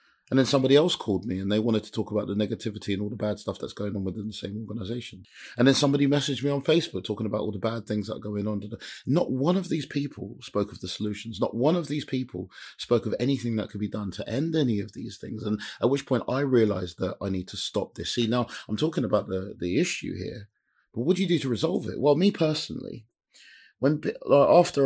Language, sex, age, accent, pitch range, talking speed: English, male, 30-49, British, 95-120 Hz, 250 wpm